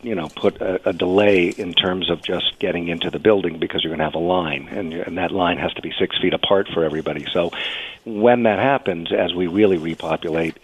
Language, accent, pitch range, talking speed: English, American, 85-100 Hz, 230 wpm